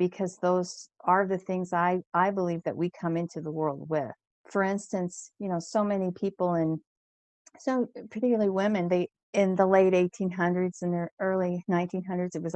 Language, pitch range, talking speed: English, 170-195 Hz, 175 wpm